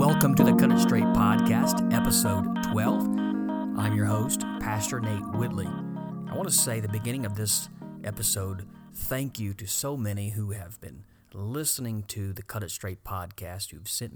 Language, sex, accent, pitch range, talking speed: English, male, American, 105-115 Hz, 175 wpm